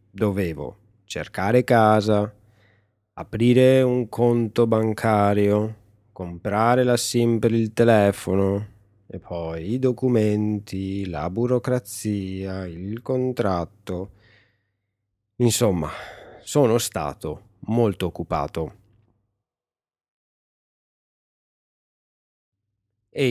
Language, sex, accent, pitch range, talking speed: Italian, male, native, 100-115 Hz, 70 wpm